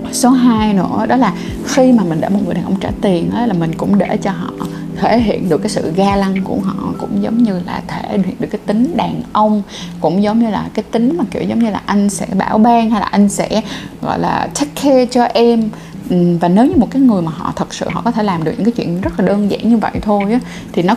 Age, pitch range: 20-39, 185-235 Hz